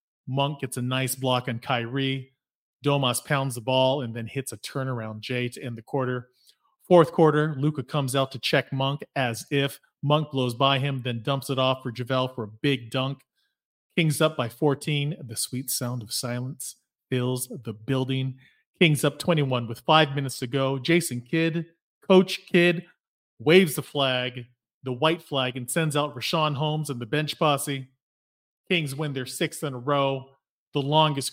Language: English